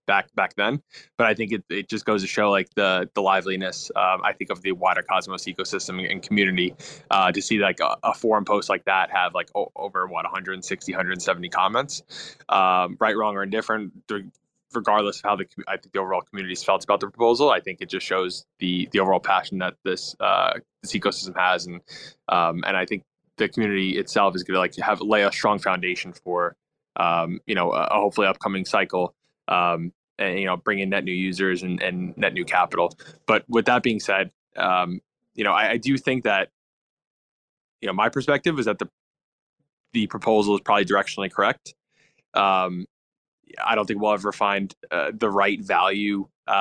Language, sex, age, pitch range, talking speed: English, male, 20-39, 95-110 Hz, 195 wpm